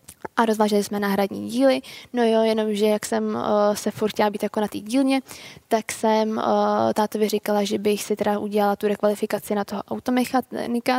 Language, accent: Czech, native